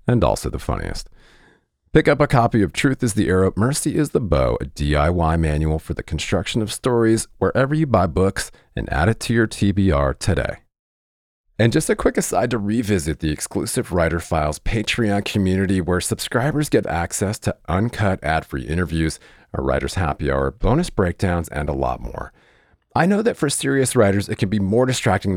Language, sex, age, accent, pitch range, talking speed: English, male, 40-59, American, 80-110 Hz, 185 wpm